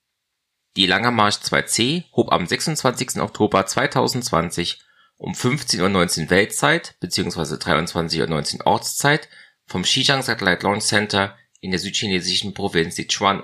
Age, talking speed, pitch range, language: 30-49, 120 wpm, 95-125 Hz, German